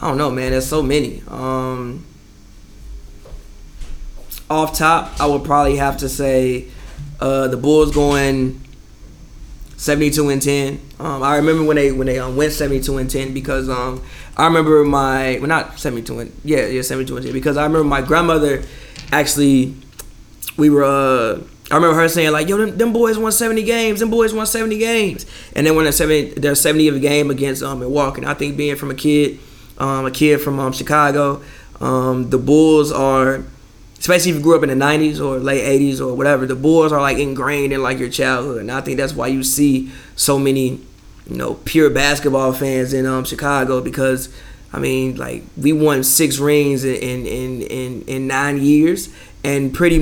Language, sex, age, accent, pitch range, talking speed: English, male, 20-39, American, 130-150 Hz, 195 wpm